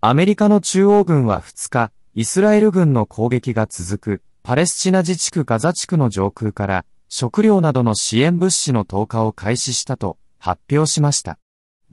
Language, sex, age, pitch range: Japanese, male, 30-49, 105-170 Hz